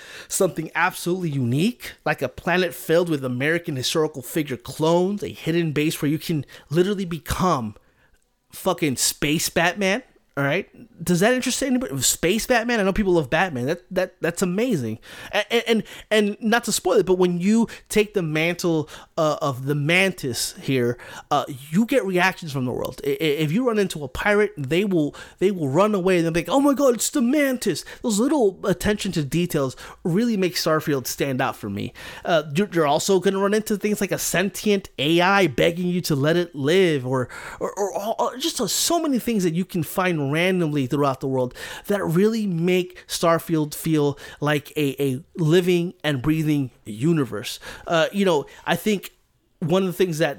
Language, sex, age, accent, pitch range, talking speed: English, male, 30-49, American, 145-195 Hz, 180 wpm